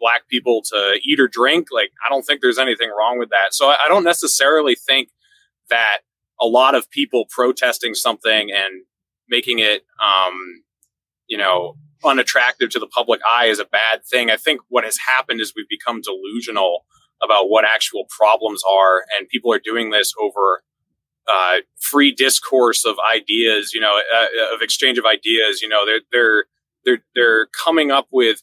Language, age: English, 30-49